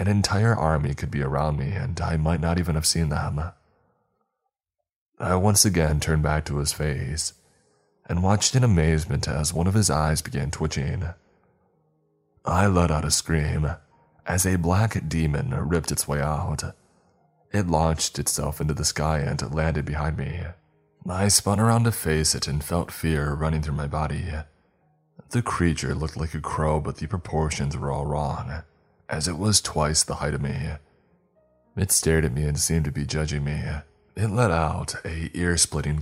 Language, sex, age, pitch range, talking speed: English, male, 20-39, 75-85 Hz, 175 wpm